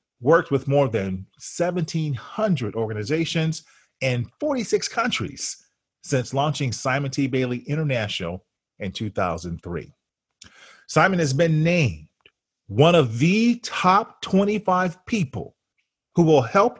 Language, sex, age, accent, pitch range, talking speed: English, male, 40-59, American, 130-180 Hz, 105 wpm